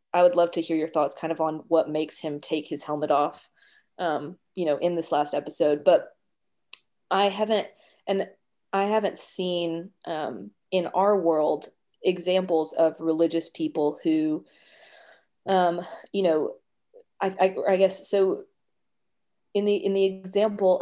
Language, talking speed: English, 155 wpm